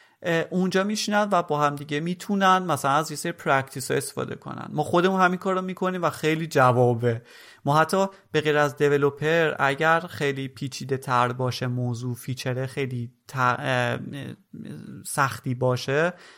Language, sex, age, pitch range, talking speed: Persian, male, 30-49, 125-165 Hz, 135 wpm